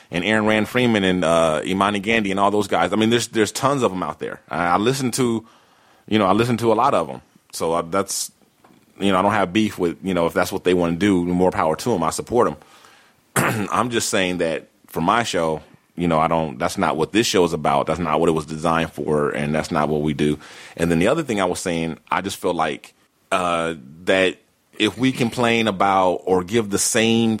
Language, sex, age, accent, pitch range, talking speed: English, male, 30-49, American, 85-105 Hz, 245 wpm